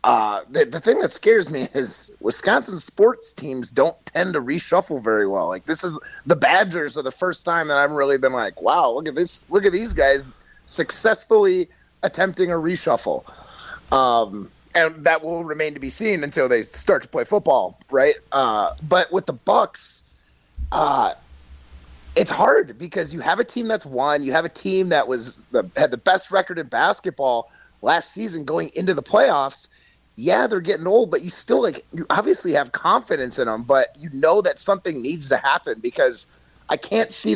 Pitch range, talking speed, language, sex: 135-215 Hz, 190 wpm, English, male